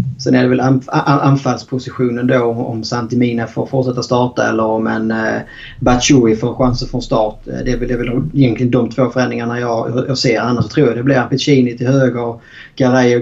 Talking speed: 170 wpm